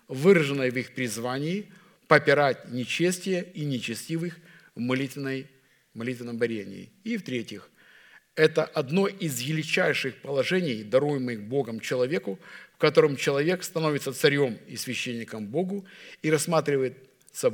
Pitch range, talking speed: 130-170 Hz, 105 wpm